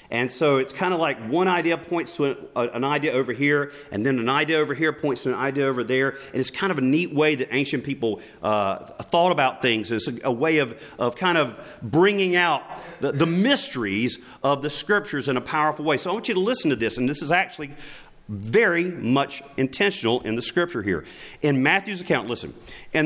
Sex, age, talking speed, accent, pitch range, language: male, 40-59, 220 wpm, American, 120-180 Hz, English